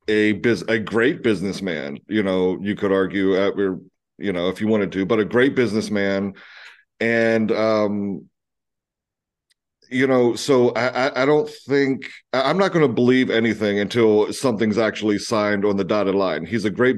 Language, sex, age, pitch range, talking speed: English, male, 40-59, 105-125 Hz, 165 wpm